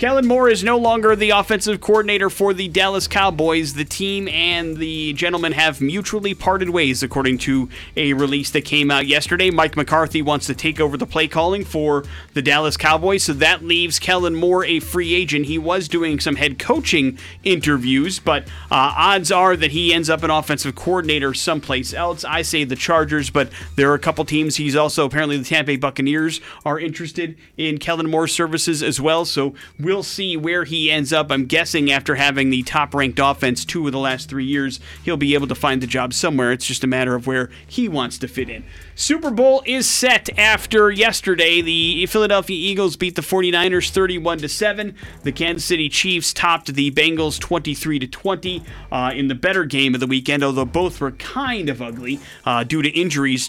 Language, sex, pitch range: English, male, 140-180 Hz